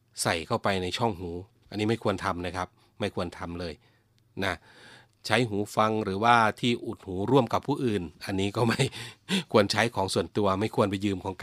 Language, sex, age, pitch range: Thai, male, 30-49, 100-120 Hz